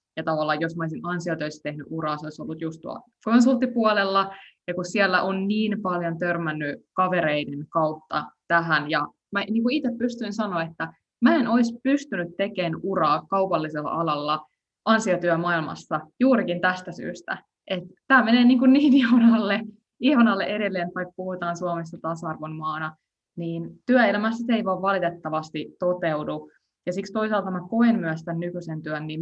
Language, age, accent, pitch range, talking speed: Finnish, 20-39, native, 160-205 Hz, 150 wpm